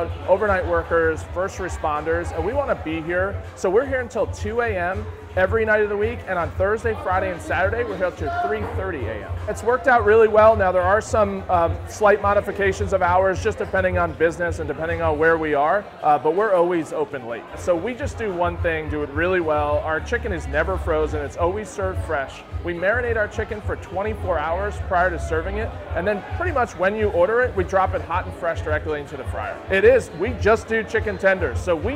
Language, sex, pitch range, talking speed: English, male, 150-215 Hz, 220 wpm